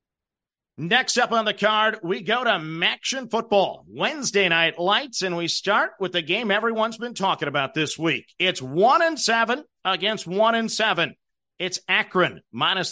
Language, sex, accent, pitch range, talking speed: English, male, American, 180-225 Hz, 165 wpm